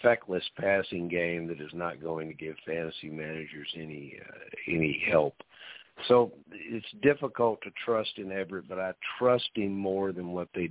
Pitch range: 85-105 Hz